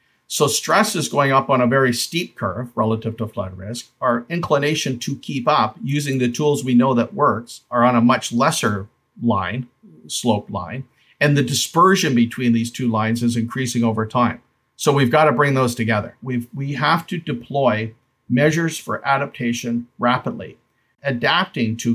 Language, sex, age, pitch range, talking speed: English, male, 50-69, 115-140 Hz, 170 wpm